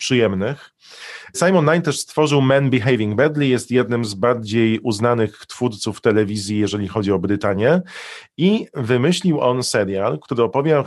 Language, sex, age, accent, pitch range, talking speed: Polish, male, 40-59, native, 115-135 Hz, 140 wpm